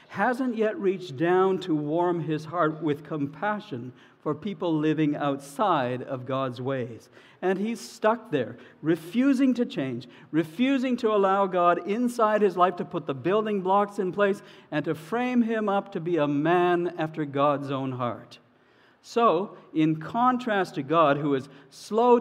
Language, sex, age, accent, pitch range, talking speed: English, male, 60-79, American, 155-210 Hz, 160 wpm